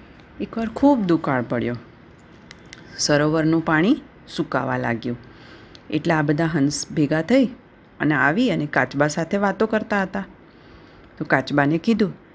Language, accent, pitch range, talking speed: Gujarati, native, 140-205 Hz, 120 wpm